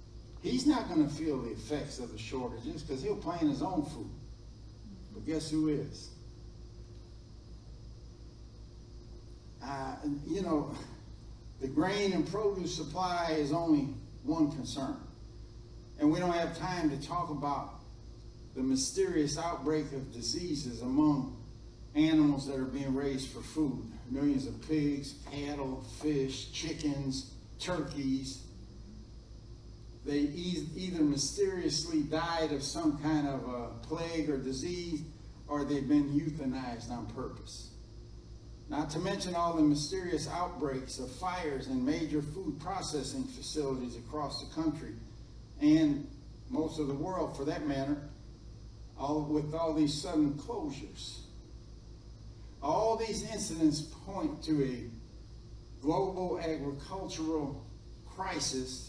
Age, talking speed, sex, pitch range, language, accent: 60-79, 120 wpm, male, 125-155 Hz, English, American